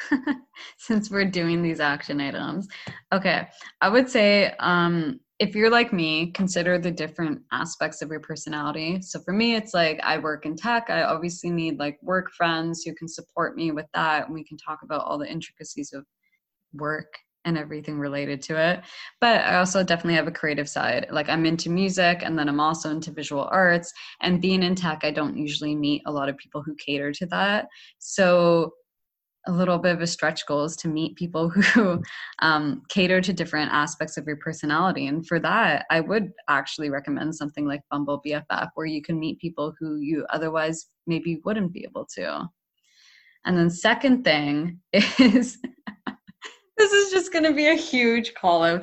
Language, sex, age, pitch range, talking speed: English, female, 20-39, 155-195 Hz, 185 wpm